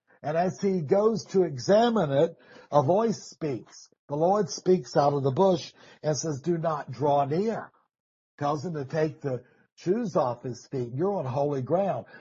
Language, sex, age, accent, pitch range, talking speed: English, male, 60-79, American, 140-185 Hz, 175 wpm